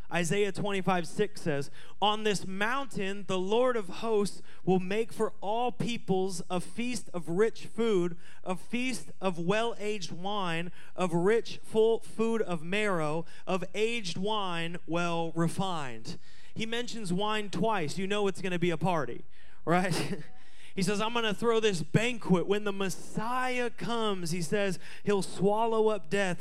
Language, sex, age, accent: English, male, 30-49, American